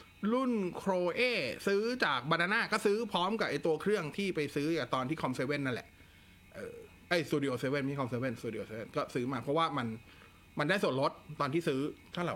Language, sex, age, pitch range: Thai, male, 20-39, 130-180 Hz